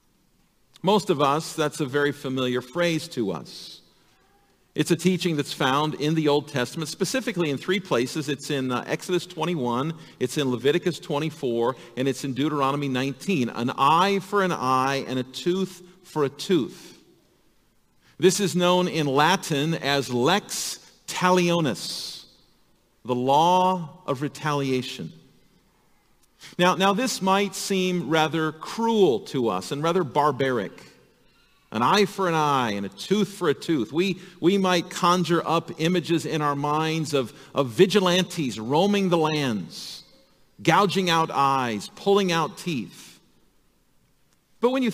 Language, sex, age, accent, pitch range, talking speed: English, male, 50-69, American, 140-180 Hz, 140 wpm